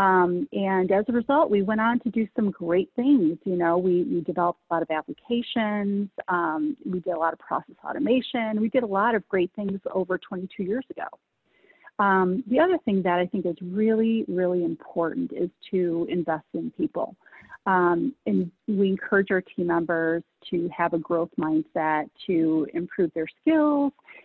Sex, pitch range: female, 175-235 Hz